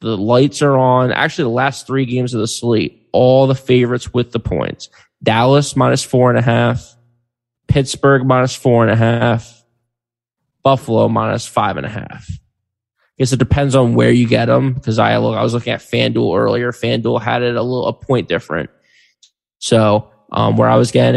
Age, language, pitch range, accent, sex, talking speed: 20-39, English, 115-130 Hz, American, male, 195 wpm